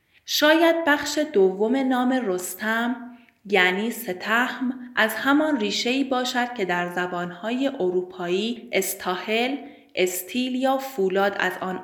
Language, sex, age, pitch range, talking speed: Persian, female, 30-49, 185-255 Hz, 105 wpm